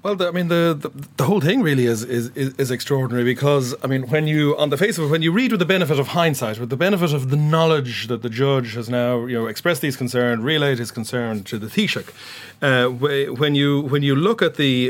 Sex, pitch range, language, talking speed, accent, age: male, 125-160 Hz, English, 245 wpm, Irish, 30-49